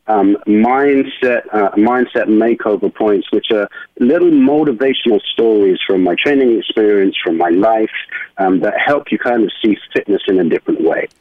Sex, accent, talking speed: male, British, 160 wpm